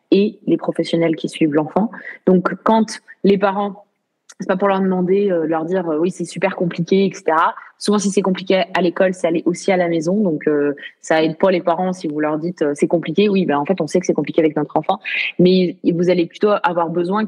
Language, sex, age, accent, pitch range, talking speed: French, female, 20-39, French, 175-205 Hz, 235 wpm